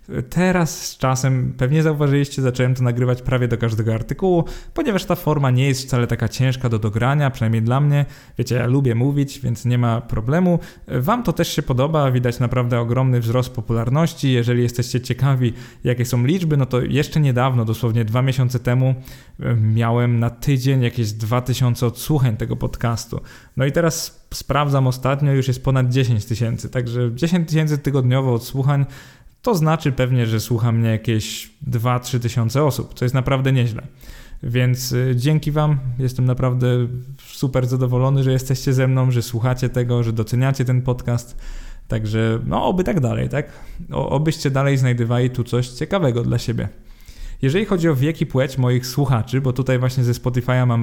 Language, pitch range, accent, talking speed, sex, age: Polish, 120-135 Hz, native, 165 wpm, male, 20-39